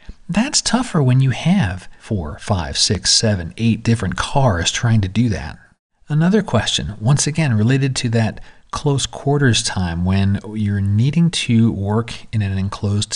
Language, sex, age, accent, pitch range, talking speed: English, male, 40-59, American, 105-150 Hz, 155 wpm